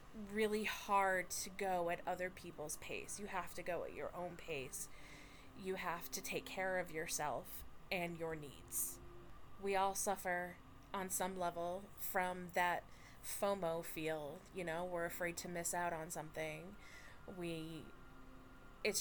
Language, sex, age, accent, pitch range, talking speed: English, female, 20-39, American, 170-200 Hz, 150 wpm